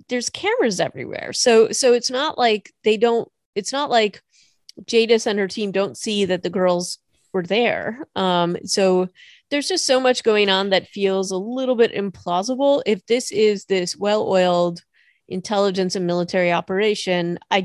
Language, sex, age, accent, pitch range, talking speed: English, female, 30-49, American, 180-225 Hz, 165 wpm